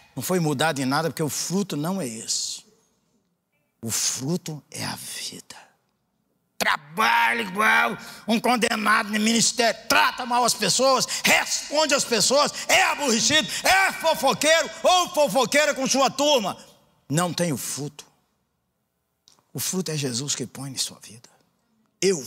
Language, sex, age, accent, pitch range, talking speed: Portuguese, male, 50-69, Brazilian, 155-225 Hz, 140 wpm